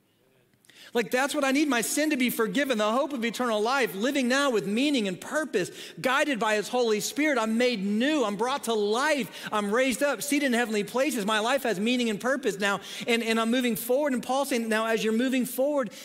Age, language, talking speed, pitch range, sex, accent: 40-59, English, 225 wpm, 185-240 Hz, male, American